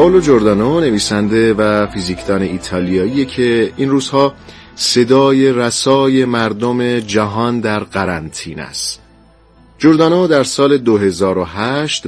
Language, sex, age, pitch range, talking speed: Persian, male, 40-59, 95-130 Hz, 100 wpm